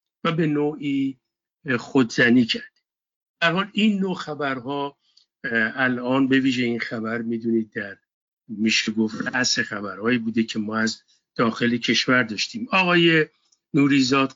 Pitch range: 115-140 Hz